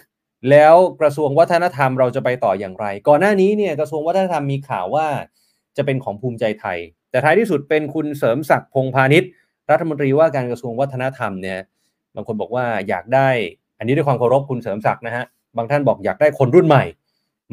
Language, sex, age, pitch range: Thai, male, 20-39, 125-155 Hz